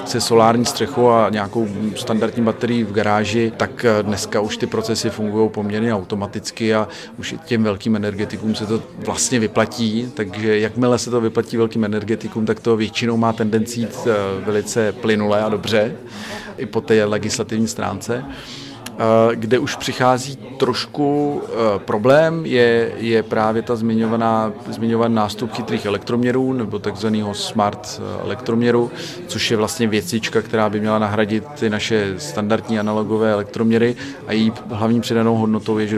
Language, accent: Czech, native